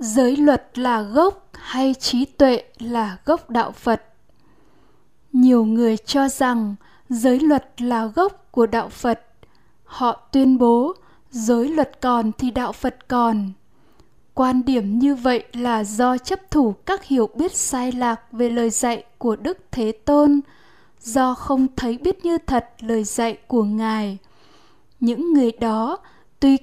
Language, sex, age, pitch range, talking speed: Vietnamese, female, 10-29, 235-275 Hz, 150 wpm